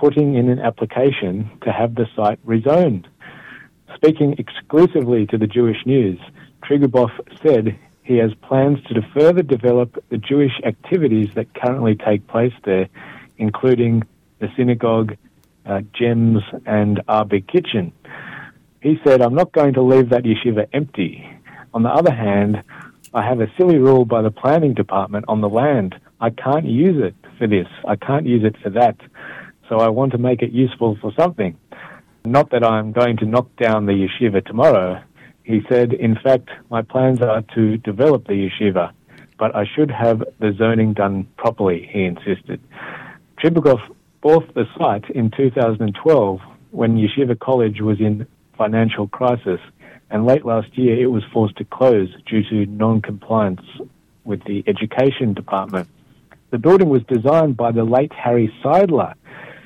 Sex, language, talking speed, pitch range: male, Hebrew, 155 wpm, 105-130 Hz